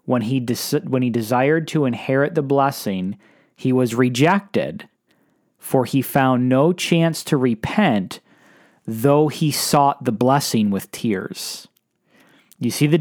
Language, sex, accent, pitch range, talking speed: English, male, American, 120-165 Hz, 140 wpm